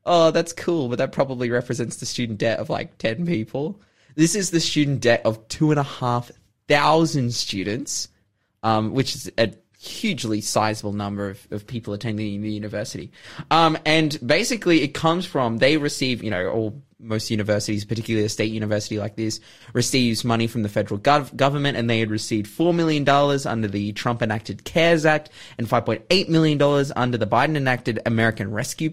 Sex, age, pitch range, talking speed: male, 20-39, 105-140 Hz, 170 wpm